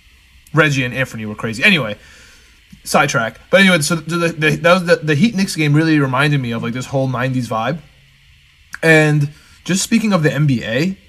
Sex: male